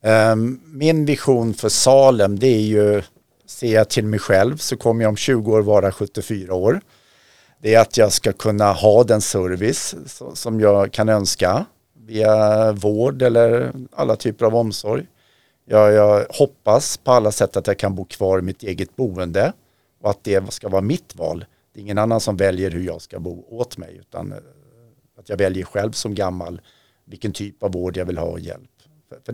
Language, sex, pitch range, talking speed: Swedish, male, 95-120 Hz, 185 wpm